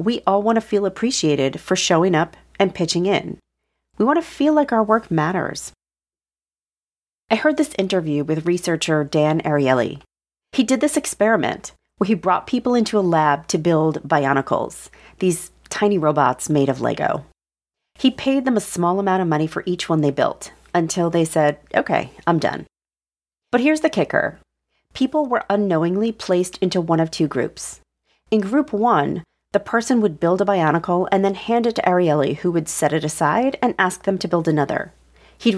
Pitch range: 155-220 Hz